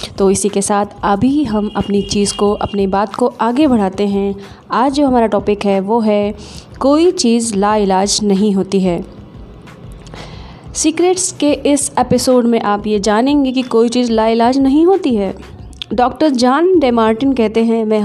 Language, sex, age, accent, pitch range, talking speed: Hindi, female, 20-39, native, 200-260 Hz, 165 wpm